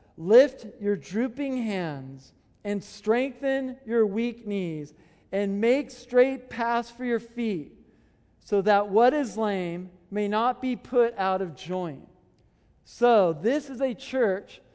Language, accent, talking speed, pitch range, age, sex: English, American, 135 wpm, 180-245 Hz, 50-69, male